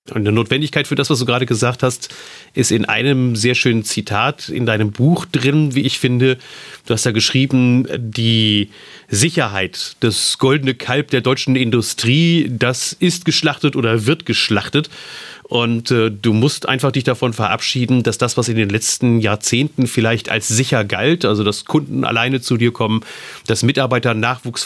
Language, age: German, 40-59